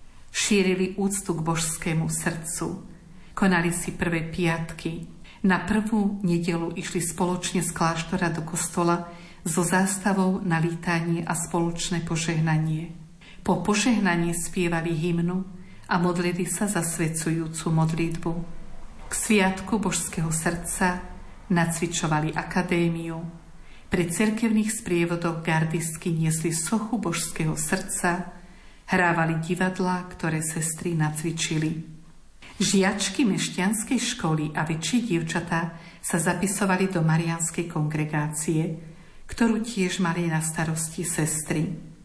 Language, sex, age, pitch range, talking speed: Slovak, female, 50-69, 165-185 Hz, 100 wpm